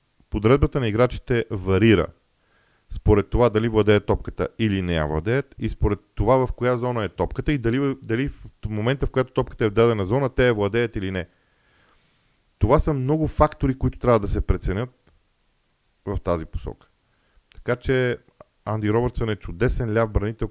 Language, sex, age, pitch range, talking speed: Bulgarian, male, 40-59, 95-125 Hz, 170 wpm